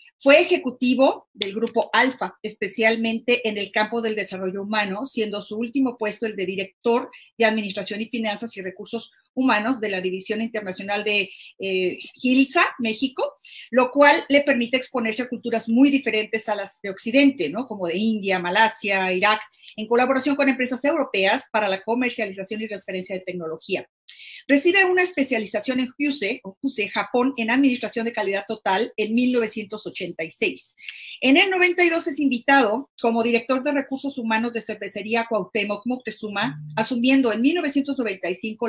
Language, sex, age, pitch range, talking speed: English, female, 40-59, 210-270 Hz, 145 wpm